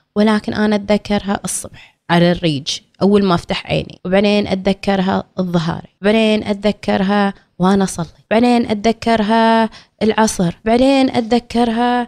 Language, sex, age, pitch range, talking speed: Arabic, female, 20-39, 195-245 Hz, 110 wpm